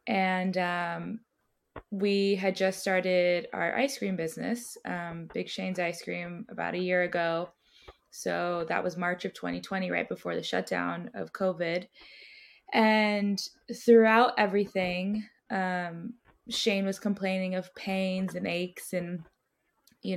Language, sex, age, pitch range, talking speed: English, female, 20-39, 180-210 Hz, 130 wpm